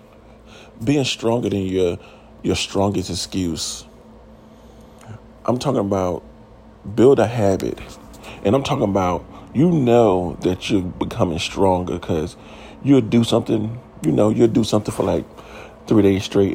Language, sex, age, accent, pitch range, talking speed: English, male, 40-59, American, 100-140 Hz, 135 wpm